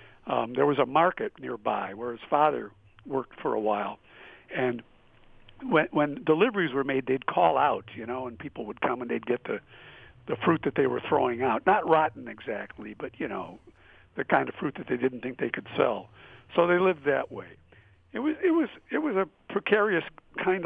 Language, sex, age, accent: English, male, 50-69, American